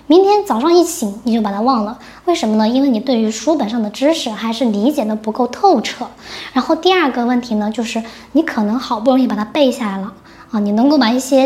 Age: 10-29